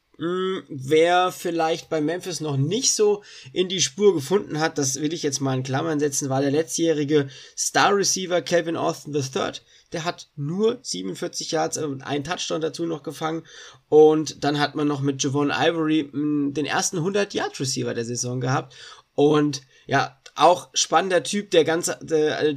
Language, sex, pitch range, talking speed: German, male, 145-170 Hz, 170 wpm